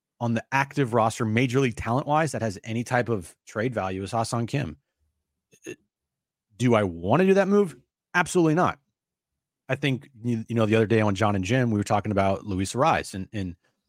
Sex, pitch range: male, 100-130 Hz